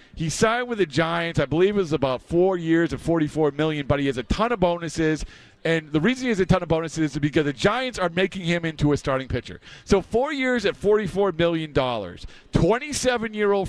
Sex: male